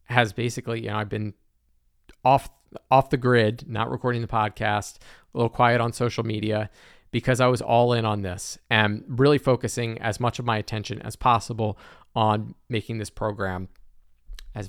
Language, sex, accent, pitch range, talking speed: English, male, American, 105-125 Hz, 170 wpm